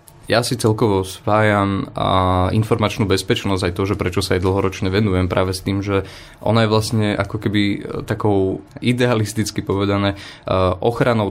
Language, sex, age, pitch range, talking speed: Slovak, male, 20-39, 95-105 Hz, 150 wpm